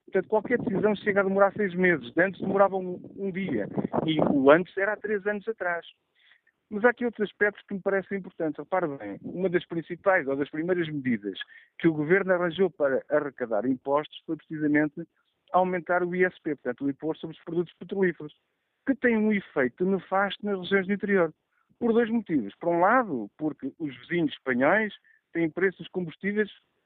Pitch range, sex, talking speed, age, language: 155-195 Hz, male, 180 wpm, 50-69, Portuguese